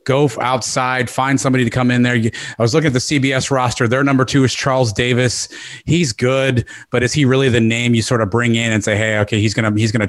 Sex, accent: male, American